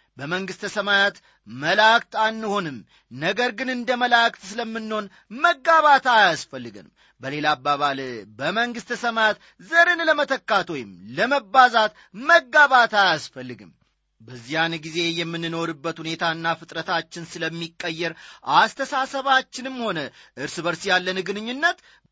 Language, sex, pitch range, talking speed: Amharic, male, 165-235 Hz, 85 wpm